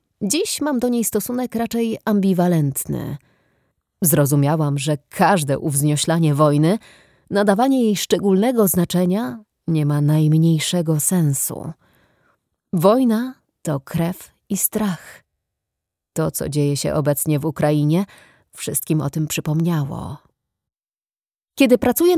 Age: 30-49